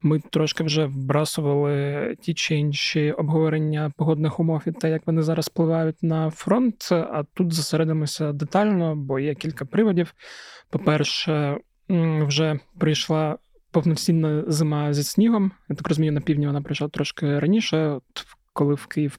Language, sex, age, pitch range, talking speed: Ukrainian, male, 20-39, 150-165 Hz, 145 wpm